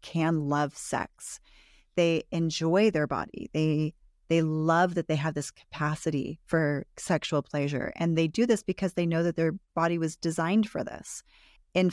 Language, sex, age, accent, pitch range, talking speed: English, female, 30-49, American, 150-175 Hz, 165 wpm